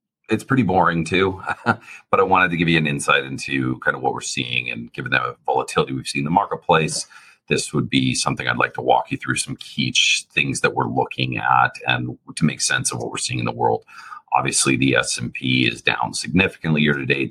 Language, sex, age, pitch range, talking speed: English, male, 40-59, 70-95 Hz, 215 wpm